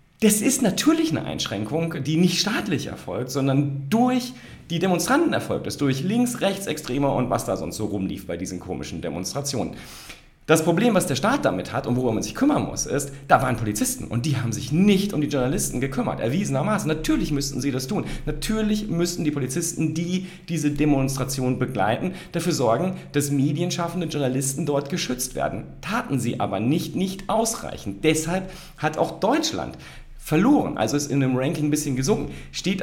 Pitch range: 115-165 Hz